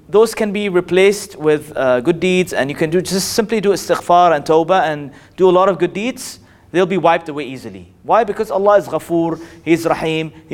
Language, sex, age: English, male, 30-49